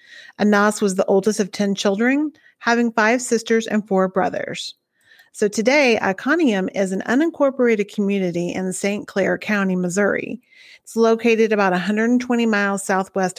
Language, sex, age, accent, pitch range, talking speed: English, female, 30-49, American, 190-240 Hz, 140 wpm